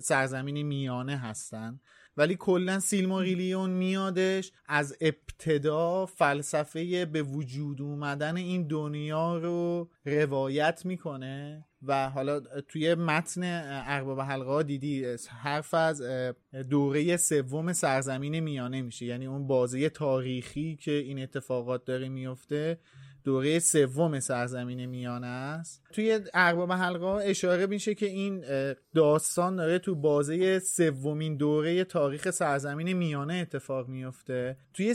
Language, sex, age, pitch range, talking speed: Persian, male, 30-49, 140-180 Hz, 115 wpm